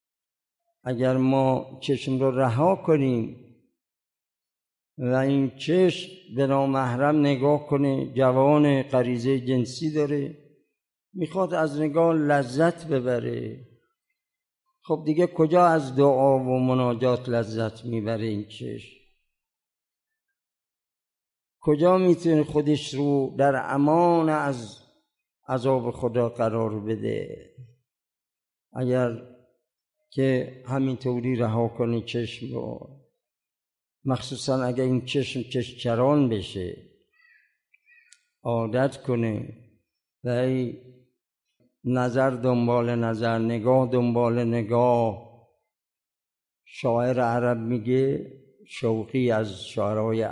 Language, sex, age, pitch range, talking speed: Persian, male, 50-69, 120-145 Hz, 85 wpm